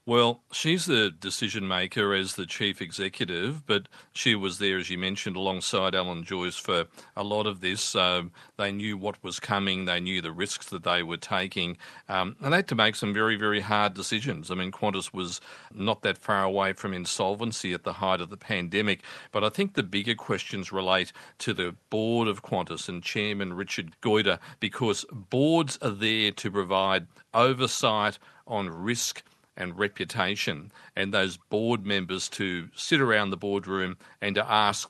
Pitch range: 95-110 Hz